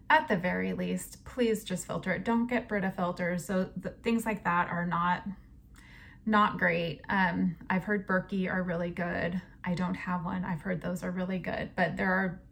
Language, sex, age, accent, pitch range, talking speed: English, female, 20-39, American, 180-220 Hz, 195 wpm